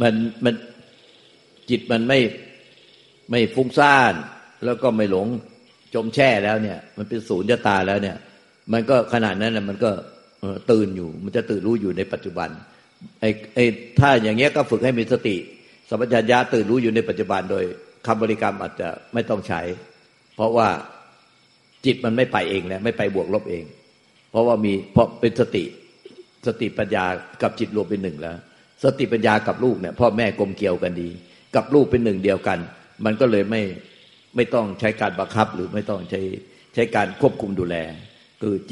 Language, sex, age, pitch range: Thai, male, 60-79, 95-120 Hz